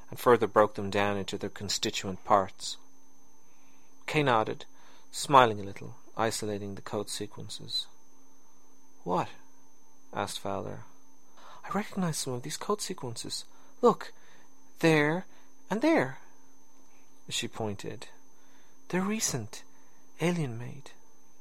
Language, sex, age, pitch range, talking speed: English, male, 40-59, 90-145 Hz, 105 wpm